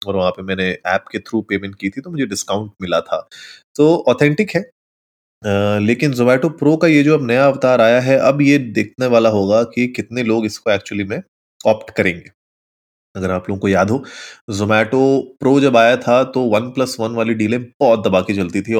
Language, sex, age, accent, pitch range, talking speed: Hindi, male, 20-39, native, 105-140 Hz, 90 wpm